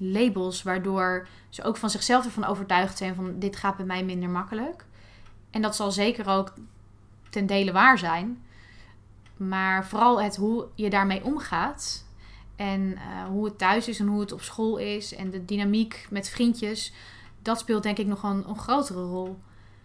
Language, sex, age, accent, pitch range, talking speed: Dutch, female, 20-39, Dutch, 185-220 Hz, 175 wpm